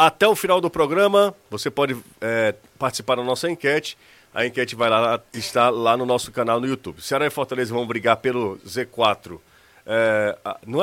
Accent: Brazilian